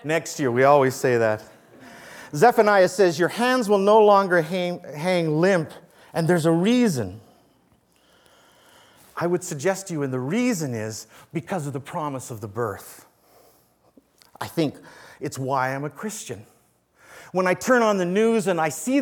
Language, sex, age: English, male, 50-69